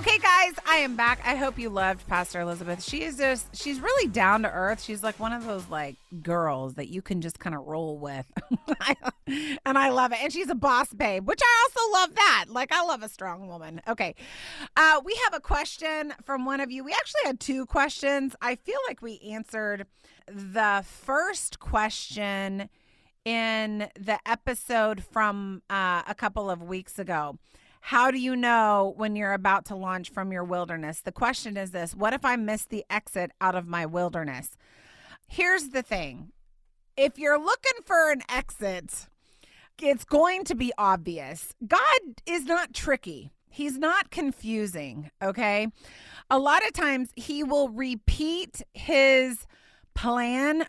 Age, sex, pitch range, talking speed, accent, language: 30-49, female, 195-280 Hz, 170 wpm, American, English